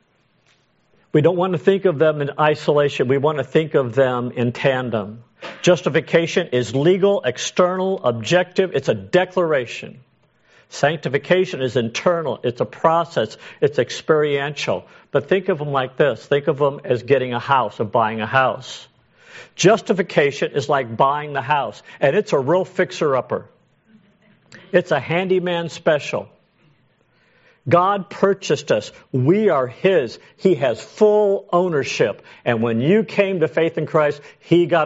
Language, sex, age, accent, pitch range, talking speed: English, male, 50-69, American, 125-180 Hz, 145 wpm